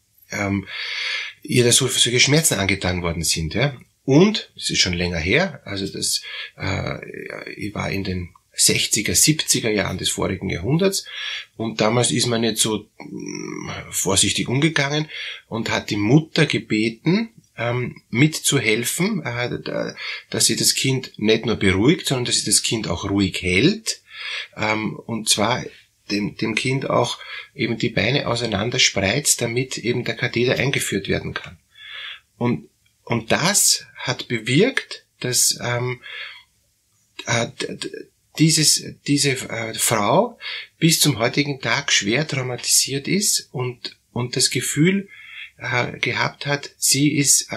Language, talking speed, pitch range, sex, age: German, 120 wpm, 110-150 Hz, male, 30-49